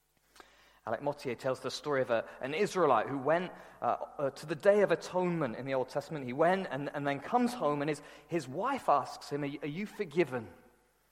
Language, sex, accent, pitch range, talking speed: English, male, British, 145-200 Hz, 210 wpm